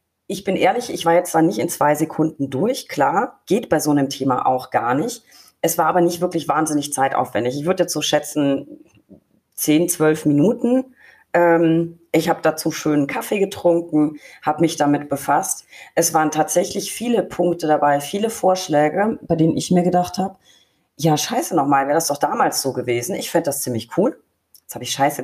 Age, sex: 30-49, female